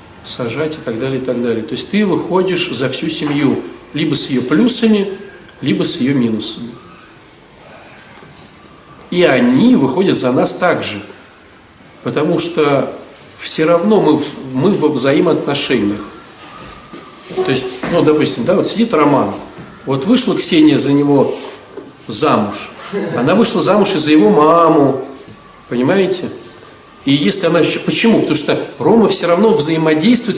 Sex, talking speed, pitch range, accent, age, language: male, 135 wpm, 150-215 Hz, native, 40-59, Russian